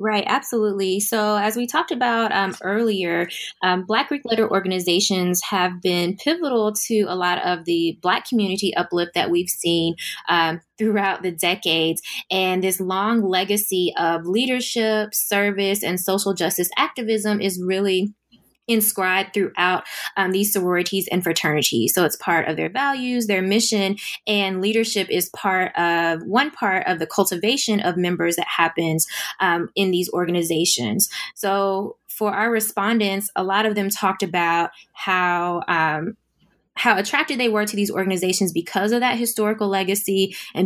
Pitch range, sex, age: 180-215 Hz, female, 20-39